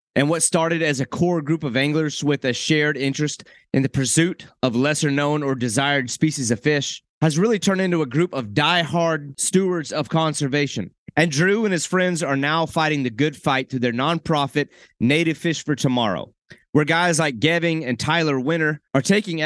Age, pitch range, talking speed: 30-49, 135-165 Hz, 190 wpm